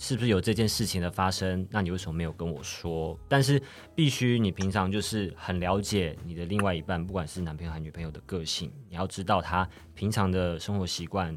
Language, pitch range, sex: Chinese, 85-110 Hz, male